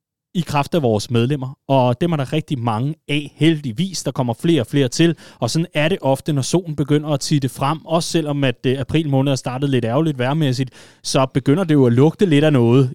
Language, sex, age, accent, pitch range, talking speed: Danish, male, 30-49, native, 125-160 Hz, 235 wpm